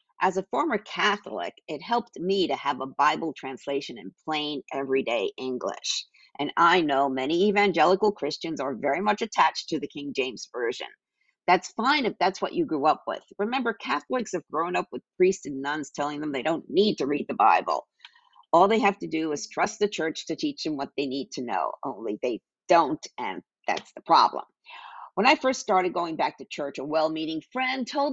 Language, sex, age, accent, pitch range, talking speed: English, female, 50-69, American, 155-260 Hz, 200 wpm